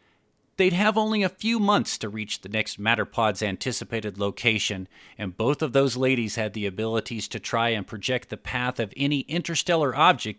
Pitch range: 100-130 Hz